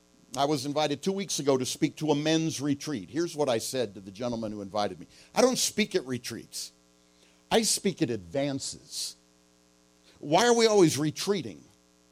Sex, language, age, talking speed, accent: male, English, 50-69, 180 wpm, American